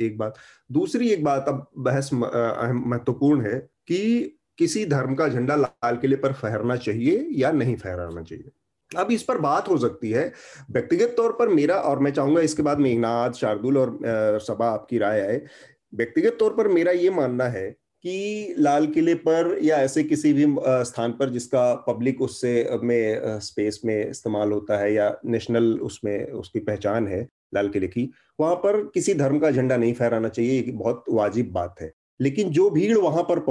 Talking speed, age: 115 wpm, 30-49